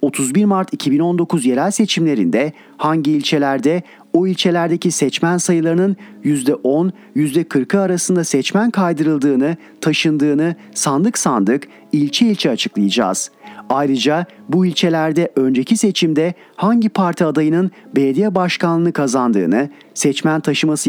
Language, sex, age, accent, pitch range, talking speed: Turkish, male, 40-59, native, 150-190 Hz, 100 wpm